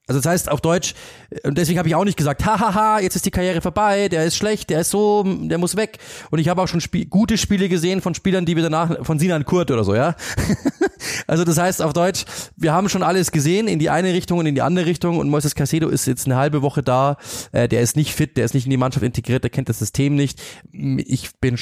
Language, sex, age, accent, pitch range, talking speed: German, male, 30-49, German, 130-175 Hz, 260 wpm